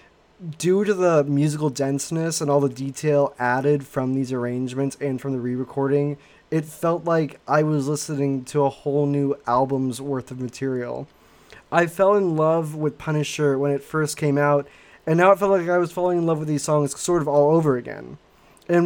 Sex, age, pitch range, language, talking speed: male, 20-39, 135-160 Hz, English, 195 wpm